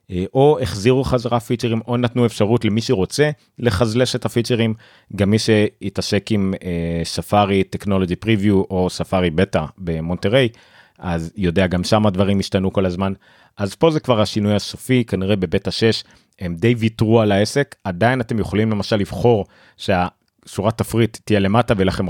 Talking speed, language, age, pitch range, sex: 150 wpm, Hebrew, 30-49, 95-125 Hz, male